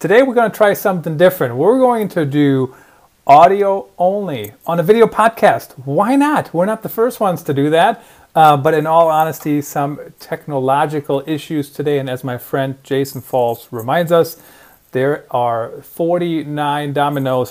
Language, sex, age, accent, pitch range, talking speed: English, male, 40-59, American, 130-160 Hz, 165 wpm